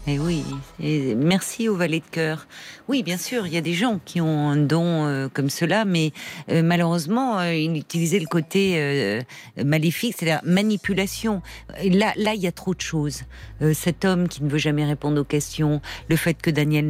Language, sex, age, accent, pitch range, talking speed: French, female, 50-69, French, 145-180 Hz, 205 wpm